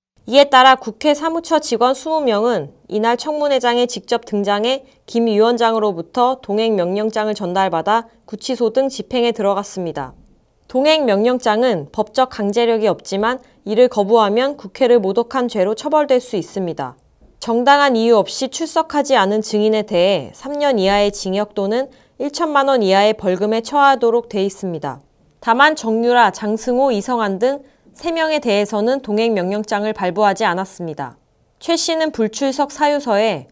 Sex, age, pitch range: female, 20-39, 205-265 Hz